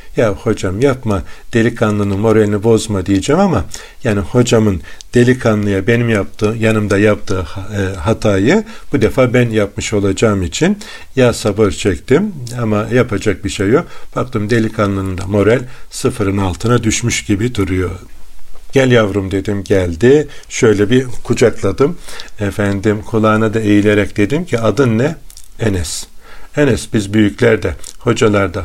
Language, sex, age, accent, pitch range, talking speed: Turkish, male, 50-69, native, 100-120 Hz, 125 wpm